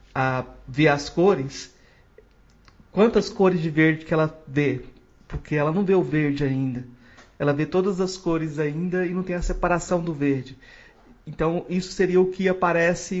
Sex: male